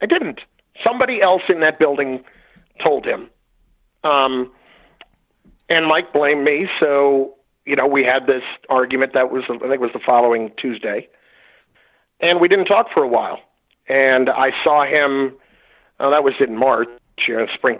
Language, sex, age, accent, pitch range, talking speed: English, male, 50-69, American, 125-160 Hz, 155 wpm